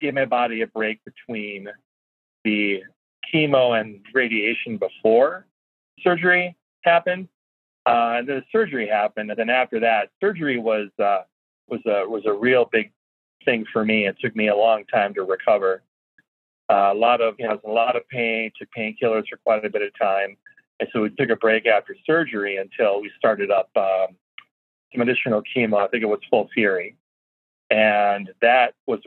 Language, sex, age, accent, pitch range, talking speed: English, male, 40-59, American, 105-130 Hz, 180 wpm